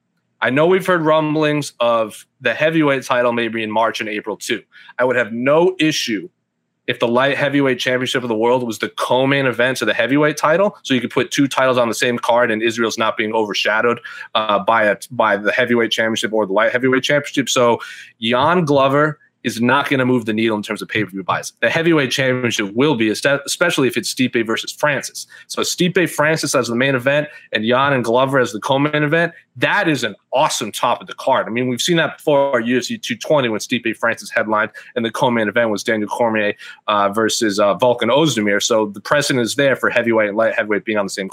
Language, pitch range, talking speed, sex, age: English, 115-145 Hz, 220 wpm, male, 30-49